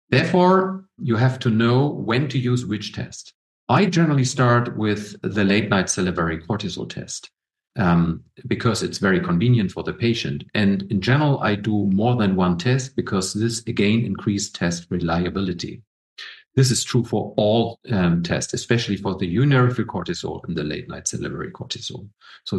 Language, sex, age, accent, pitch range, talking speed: English, male, 50-69, German, 95-130 Hz, 160 wpm